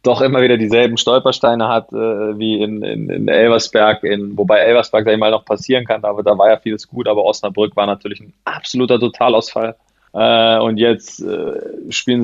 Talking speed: 185 wpm